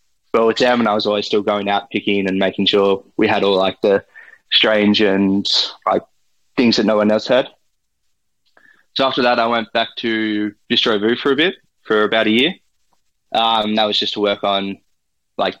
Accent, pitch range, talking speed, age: Australian, 105-115 Hz, 200 wpm, 20-39